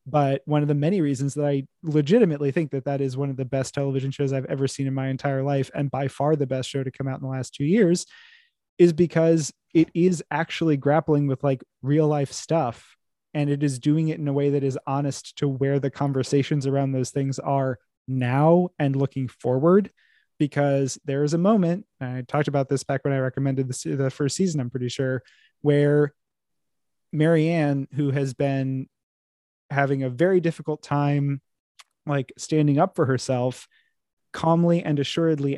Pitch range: 135-165 Hz